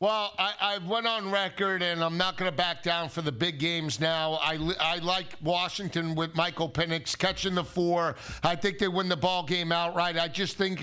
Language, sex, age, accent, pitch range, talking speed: English, male, 50-69, American, 180-210 Hz, 215 wpm